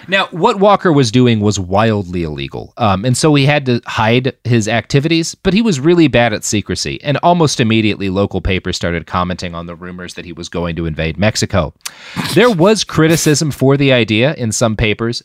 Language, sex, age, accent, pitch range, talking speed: English, male, 30-49, American, 110-165 Hz, 195 wpm